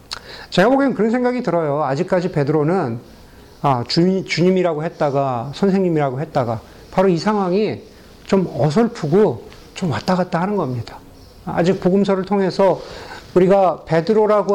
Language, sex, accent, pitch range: Korean, male, native, 155-210 Hz